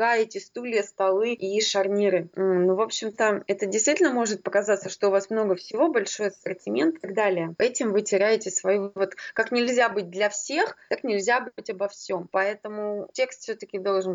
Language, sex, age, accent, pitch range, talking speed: Russian, female, 20-39, native, 195-250 Hz, 175 wpm